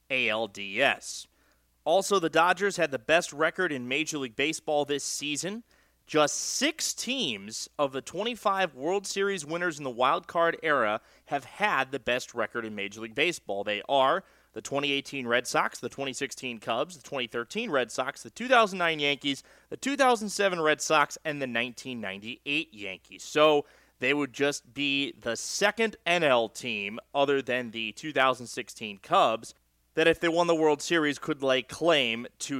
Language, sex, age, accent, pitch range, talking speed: English, male, 30-49, American, 130-205 Hz, 160 wpm